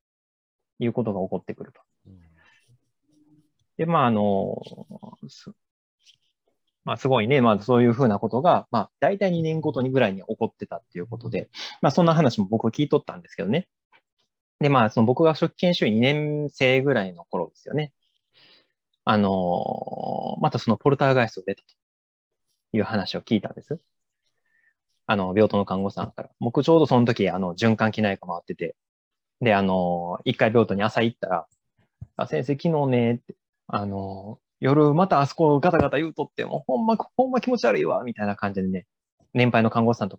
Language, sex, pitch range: Japanese, male, 100-150 Hz